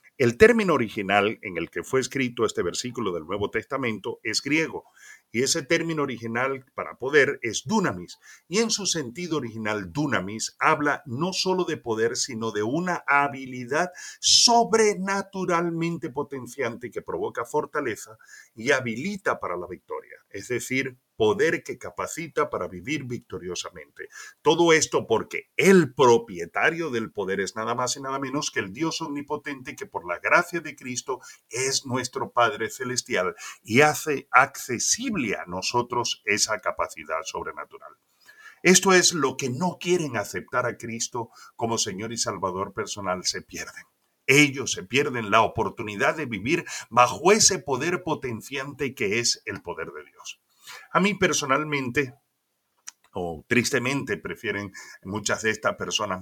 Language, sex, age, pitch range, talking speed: Spanish, male, 40-59, 125-180 Hz, 145 wpm